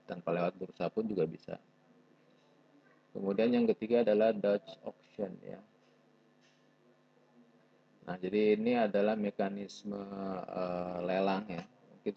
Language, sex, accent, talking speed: Indonesian, male, native, 110 wpm